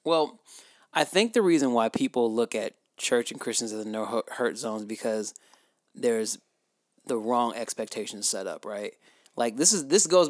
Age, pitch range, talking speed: 20-39, 115-160 Hz, 170 wpm